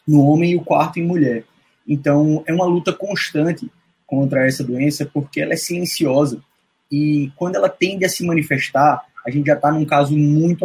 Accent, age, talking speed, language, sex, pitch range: Brazilian, 20-39, 185 wpm, Portuguese, male, 150-185 Hz